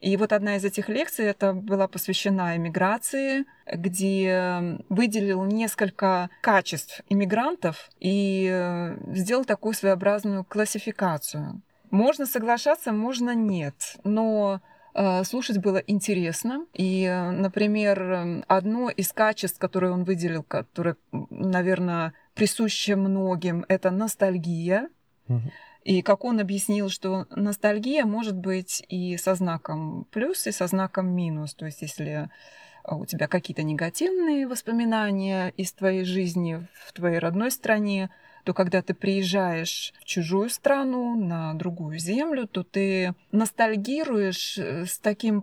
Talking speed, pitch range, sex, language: 115 wpm, 185-215 Hz, female, Russian